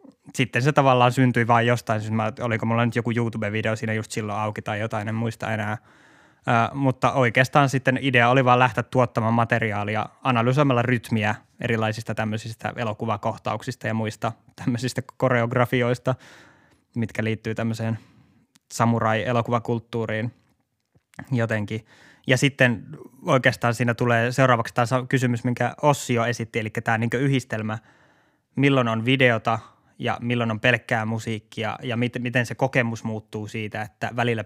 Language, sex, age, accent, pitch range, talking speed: Finnish, male, 20-39, native, 110-125 Hz, 140 wpm